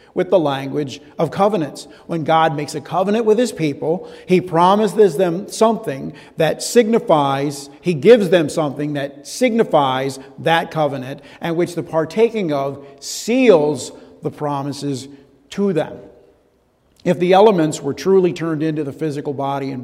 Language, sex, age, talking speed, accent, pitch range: English, male, 50-69, 145 wpm, American, 140-185 Hz